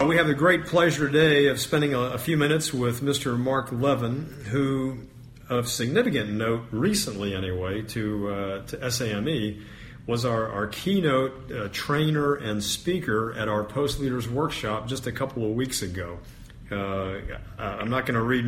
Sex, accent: male, American